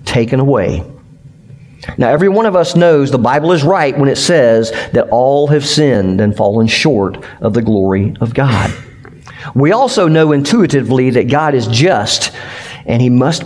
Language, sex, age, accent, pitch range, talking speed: English, male, 50-69, American, 125-165 Hz, 170 wpm